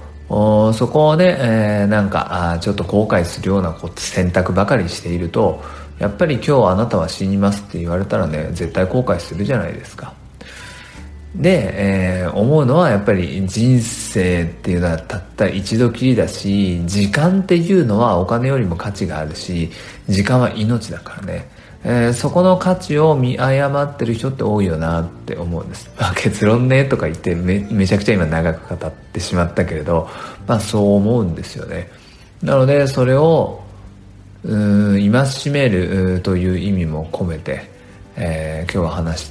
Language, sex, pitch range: Japanese, male, 85-110 Hz